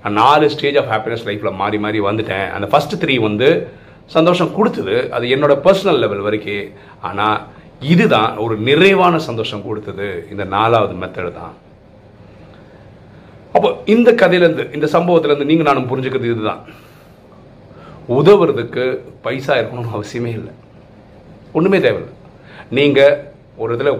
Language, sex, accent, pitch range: Tamil, male, native, 110-160 Hz